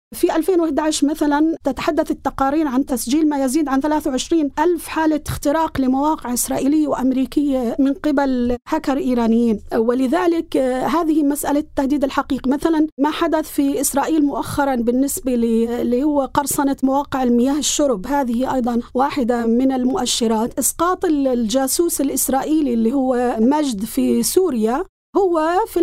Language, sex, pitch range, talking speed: Arabic, female, 260-315 Hz, 120 wpm